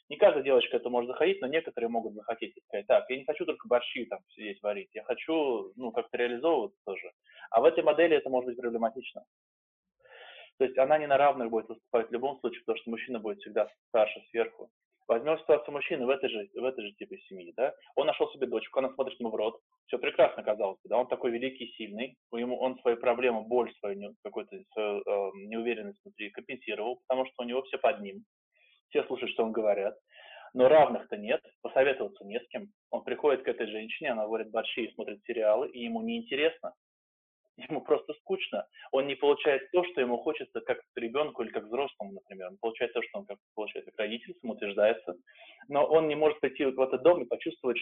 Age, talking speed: 20-39, 200 wpm